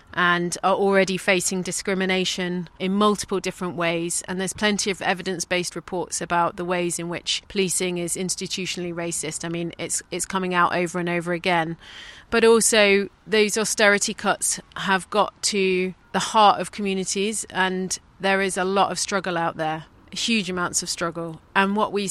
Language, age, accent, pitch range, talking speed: English, 30-49, British, 180-200 Hz, 170 wpm